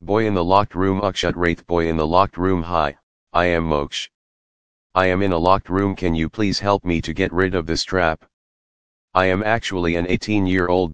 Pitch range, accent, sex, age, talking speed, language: 85-95 Hz, American, male, 40-59, 220 wpm, English